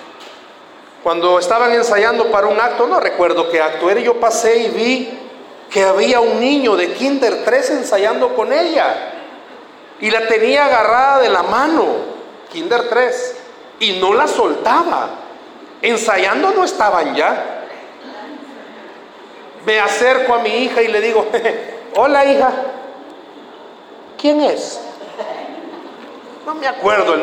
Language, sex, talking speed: Spanish, male, 130 wpm